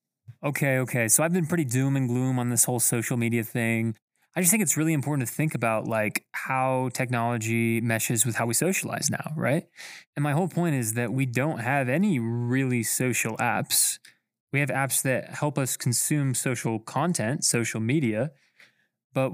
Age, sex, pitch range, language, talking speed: 20-39, male, 120-155 Hz, English, 185 wpm